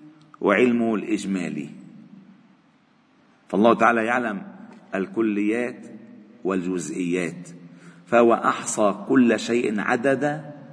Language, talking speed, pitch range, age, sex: Arabic, 65 wpm, 125-185 Hz, 50-69, male